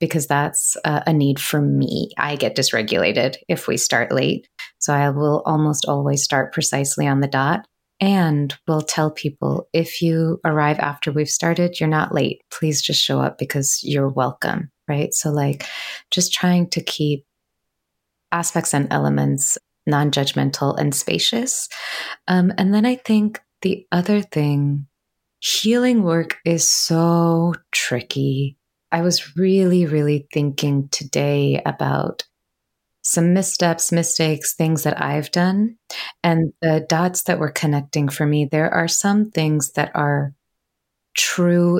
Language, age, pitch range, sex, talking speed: English, 20-39, 145-175 Hz, female, 140 wpm